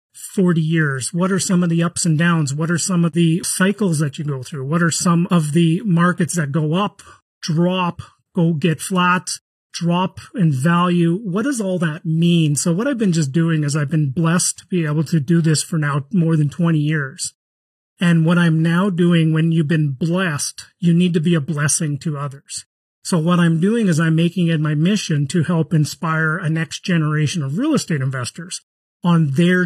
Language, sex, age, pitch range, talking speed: English, male, 30-49, 160-180 Hz, 205 wpm